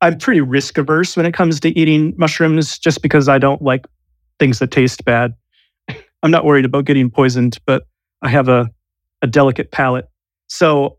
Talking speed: 175 wpm